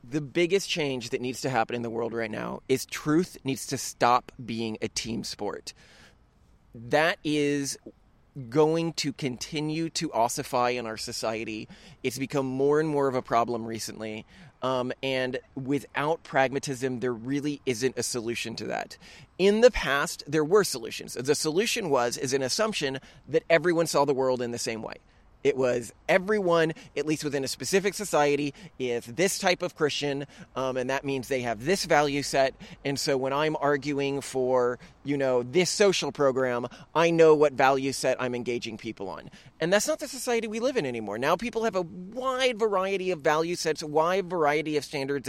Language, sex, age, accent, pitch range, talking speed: English, male, 20-39, American, 130-165 Hz, 185 wpm